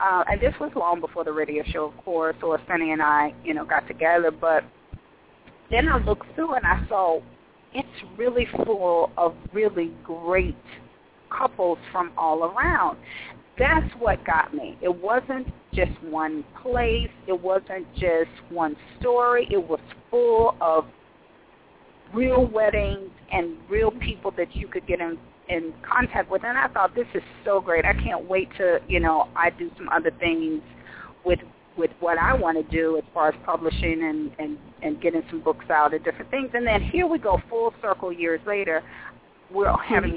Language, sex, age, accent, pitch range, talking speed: English, female, 40-59, American, 165-245 Hz, 175 wpm